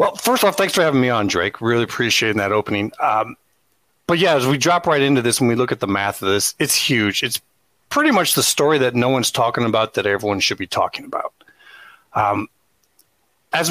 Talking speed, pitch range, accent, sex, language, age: 220 wpm, 110-145 Hz, American, male, English, 40-59